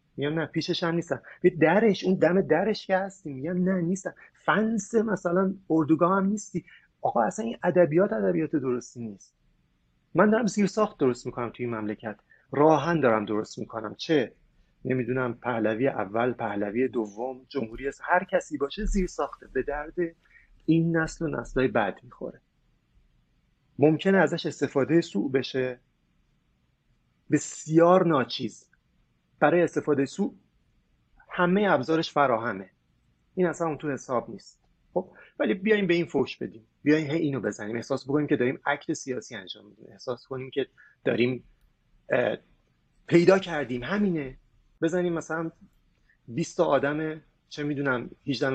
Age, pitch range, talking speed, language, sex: 30-49, 130-170 Hz, 135 wpm, English, male